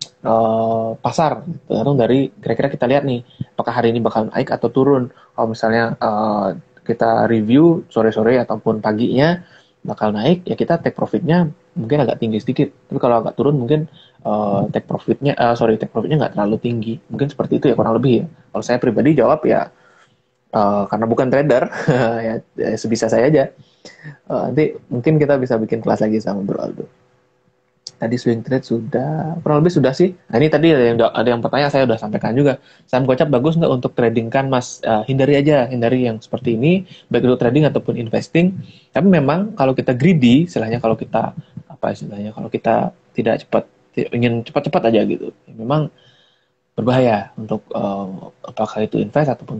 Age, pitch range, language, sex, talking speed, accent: 20-39, 115-145 Hz, Indonesian, male, 175 wpm, native